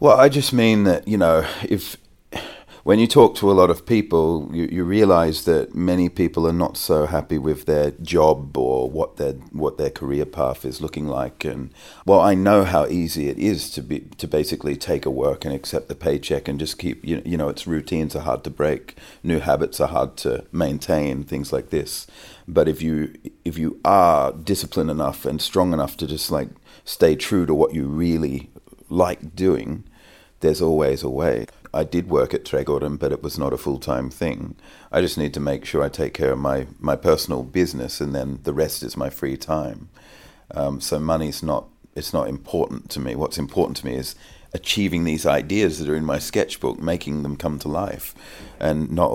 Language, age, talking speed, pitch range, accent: English, 40-59, 205 wpm, 70-85 Hz, Australian